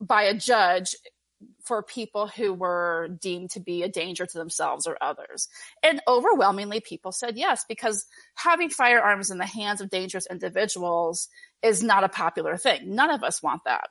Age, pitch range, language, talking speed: 30-49, 180-245 Hz, English, 175 wpm